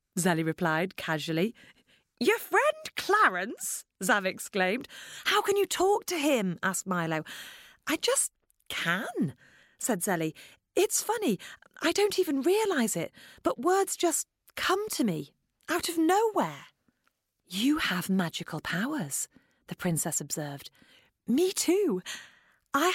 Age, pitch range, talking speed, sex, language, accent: 40-59, 175-280 Hz, 125 wpm, female, English, British